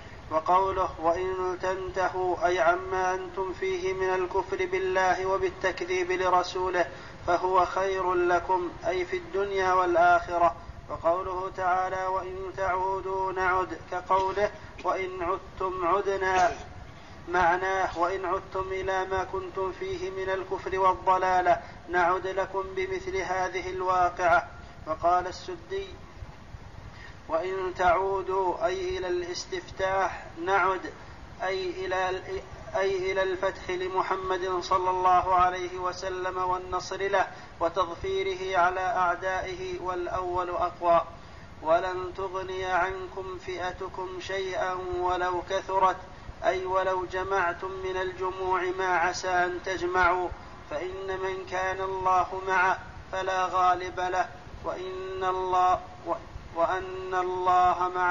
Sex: male